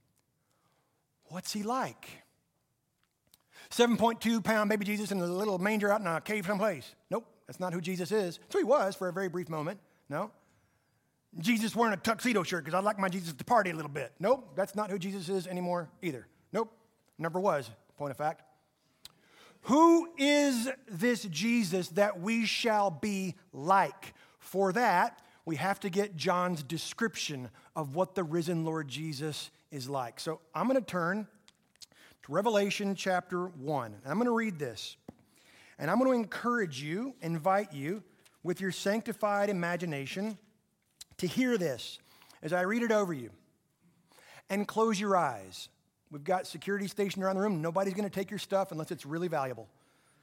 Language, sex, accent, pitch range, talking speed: English, male, American, 160-210 Hz, 170 wpm